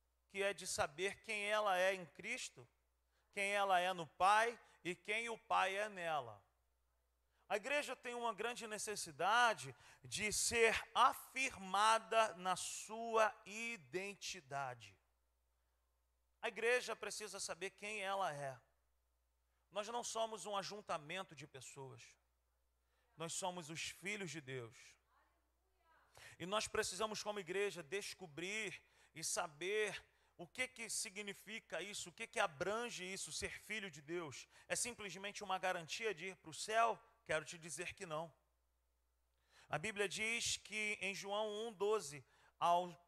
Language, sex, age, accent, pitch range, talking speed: Portuguese, male, 40-59, Brazilian, 135-210 Hz, 130 wpm